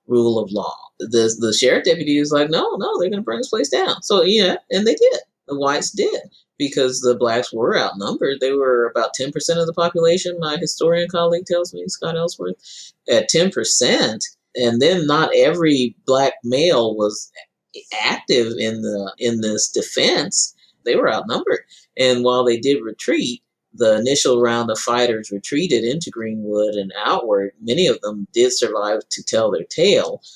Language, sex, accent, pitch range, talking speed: English, male, American, 110-140 Hz, 175 wpm